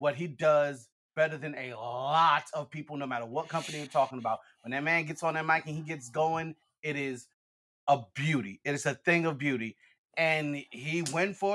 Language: English